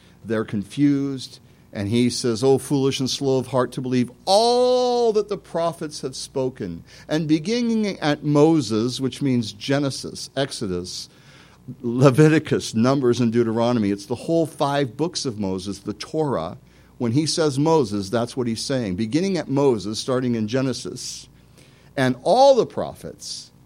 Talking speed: 145 wpm